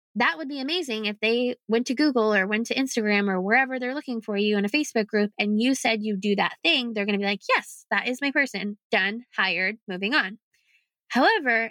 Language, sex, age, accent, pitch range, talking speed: English, female, 20-39, American, 200-260 Hz, 230 wpm